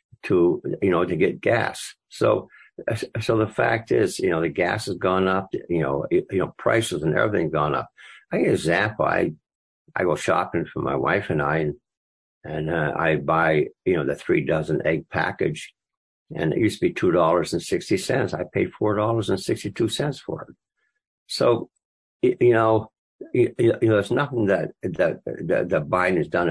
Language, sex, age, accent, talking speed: English, male, 60-79, American, 185 wpm